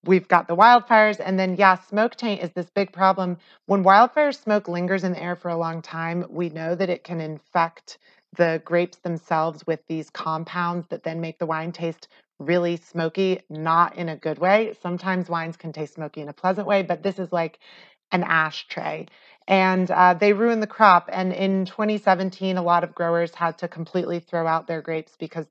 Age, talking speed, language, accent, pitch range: 30-49, 200 wpm, English, American, 165-200 Hz